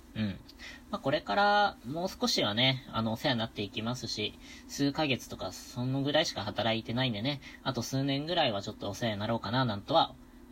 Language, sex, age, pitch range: Japanese, female, 20-39, 110-135 Hz